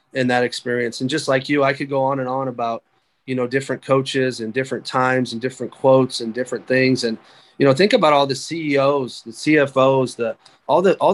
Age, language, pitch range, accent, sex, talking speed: 30-49, English, 130-150 Hz, American, male, 220 wpm